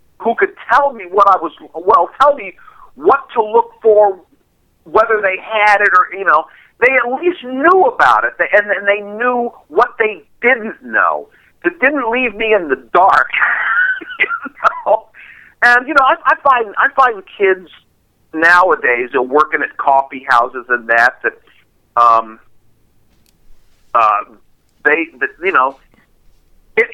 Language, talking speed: English, 160 wpm